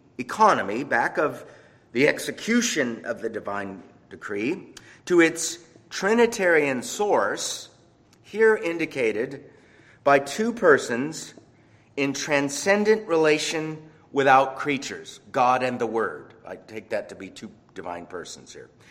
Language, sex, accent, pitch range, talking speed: English, male, American, 125-180 Hz, 115 wpm